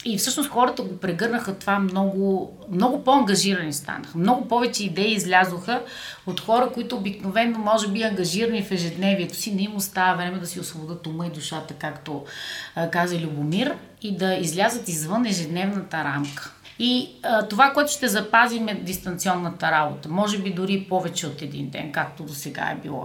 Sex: female